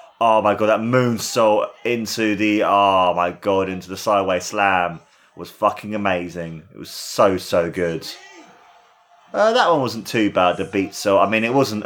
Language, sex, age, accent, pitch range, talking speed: English, male, 30-49, British, 100-130 Hz, 175 wpm